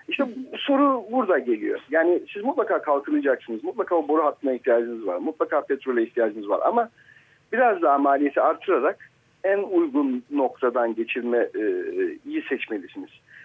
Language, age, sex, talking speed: Turkish, 50-69, male, 140 wpm